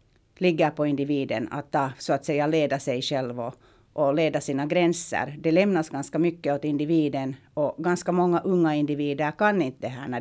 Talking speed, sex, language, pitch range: 190 wpm, female, Swedish, 145-175 Hz